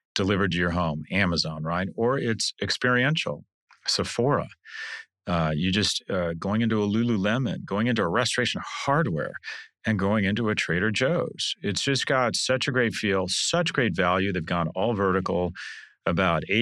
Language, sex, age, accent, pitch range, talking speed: English, male, 40-59, American, 90-120 Hz, 160 wpm